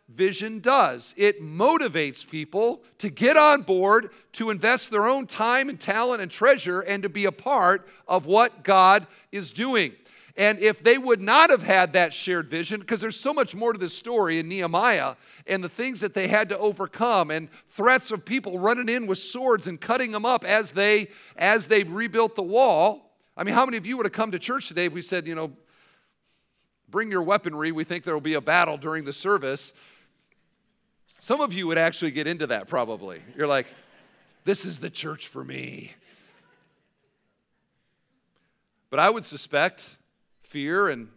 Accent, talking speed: American, 185 wpm